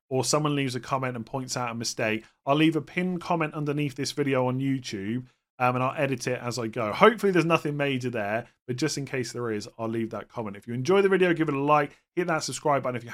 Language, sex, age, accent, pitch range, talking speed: English, male, 30-49, British, 115-140 Hz, 265 wpm